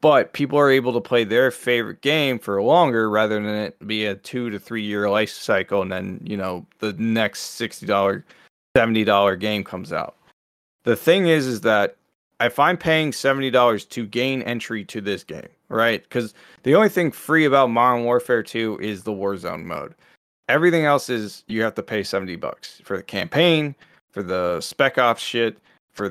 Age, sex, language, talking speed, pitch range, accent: 20-39, male, English, 185 wpm, 105-140 Hz, American